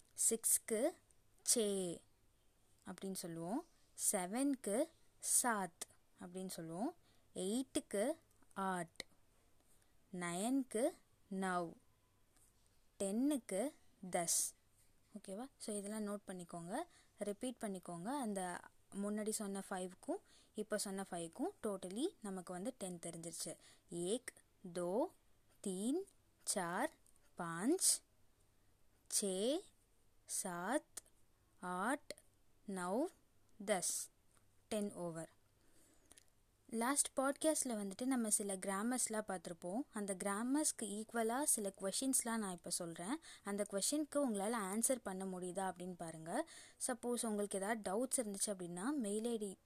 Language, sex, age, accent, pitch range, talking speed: Tamil, female, 20-39, native, 180-250 Hz, 85 wpm